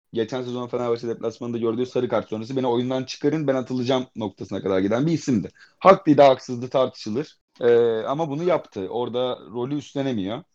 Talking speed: 165 wpm